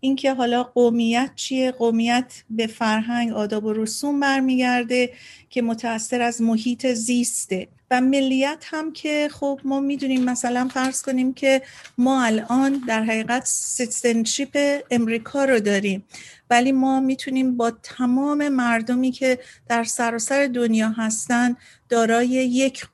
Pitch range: 230-265 Hz